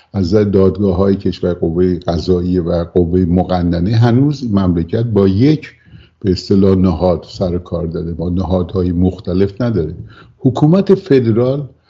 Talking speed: 120 wpm